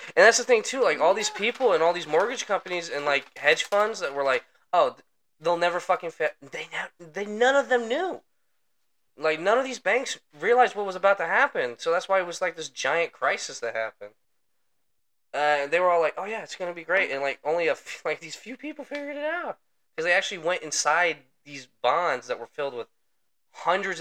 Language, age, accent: English, 10-29, American